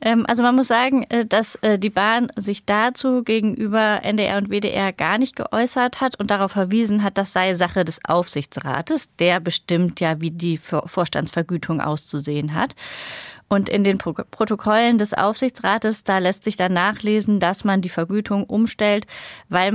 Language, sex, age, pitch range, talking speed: German, female, 30-49, 180-215 Hz, 155 wpm